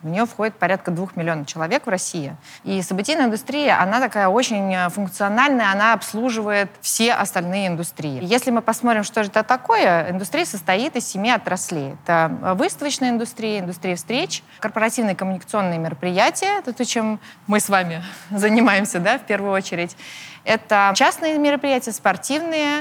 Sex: female